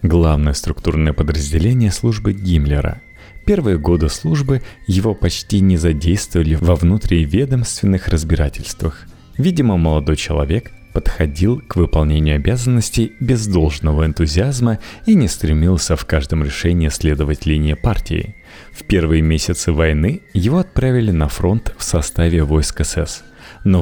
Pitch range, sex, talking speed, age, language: 80-110 Hz, male, 120 wpm, 30-49, Russian